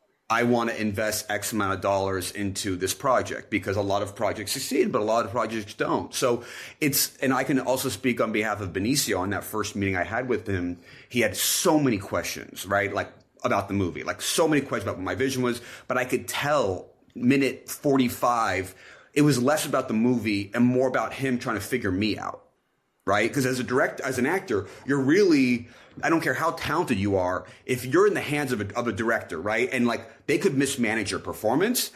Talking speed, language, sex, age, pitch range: 210 wpm, English, male, 30-49, 100-135 Hz